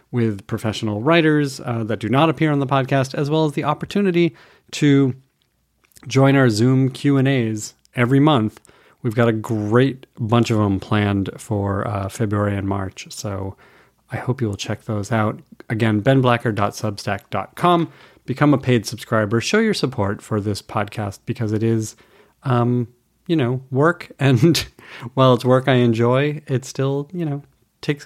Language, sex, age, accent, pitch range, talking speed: English, male, 30-49, American, 105-135 Hz, 160 wpm